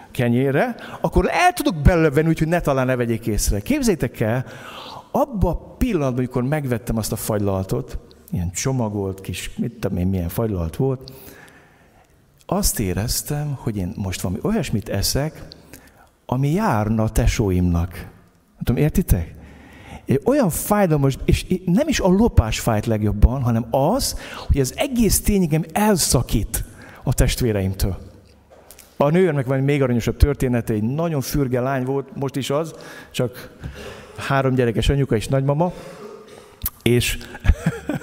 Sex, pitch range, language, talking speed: male, 110-180 Hz, Hungarian, 135 wpm